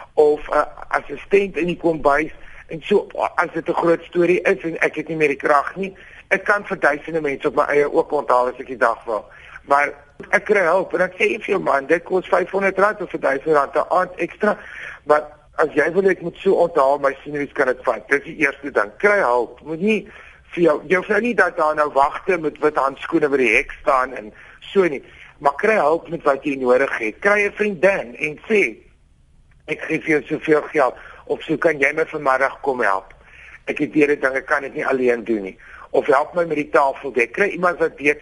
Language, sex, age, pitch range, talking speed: Dutch, male, 50-69, 140-185 Hz, 230 wpm